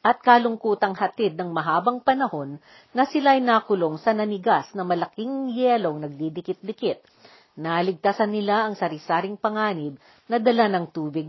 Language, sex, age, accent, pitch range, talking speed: Filipino, female, 50-69, native, 180-235 Hz, 130 wpm